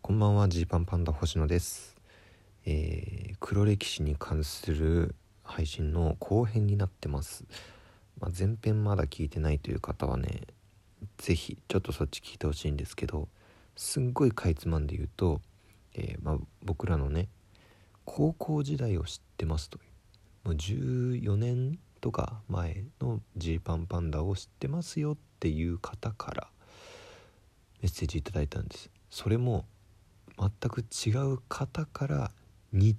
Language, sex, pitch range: Japanese, male, 85-110 Hz